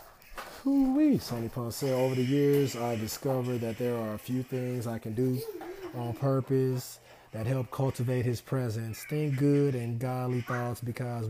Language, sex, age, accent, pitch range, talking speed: English, male, 30-49, American, 115-135 Hz, 160 wpm